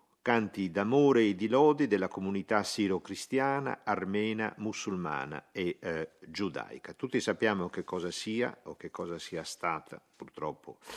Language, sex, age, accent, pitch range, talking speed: Italian, male, 50-69, native, 85-105 Hz, 130 wpm